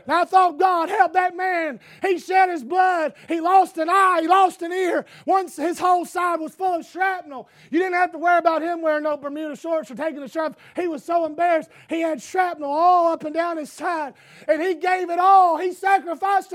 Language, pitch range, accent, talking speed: English, 270-370 Hz, American, 220 wpm